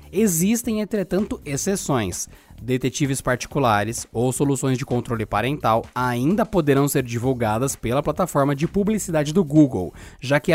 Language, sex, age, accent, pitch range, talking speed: Portuguese, male, 20-39, Brazilian, 130-180 Hz, 125 wpm